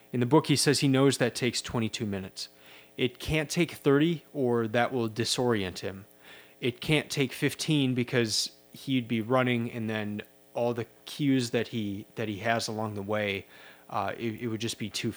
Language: English